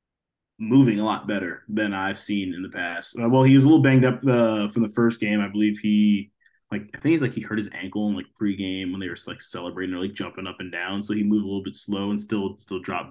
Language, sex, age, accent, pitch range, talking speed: English, male, 20-39, American, 100-120 Hz, 275 wpm